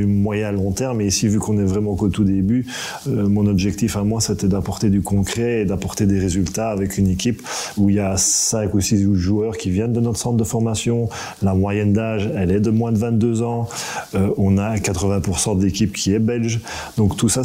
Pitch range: 100-115 Hz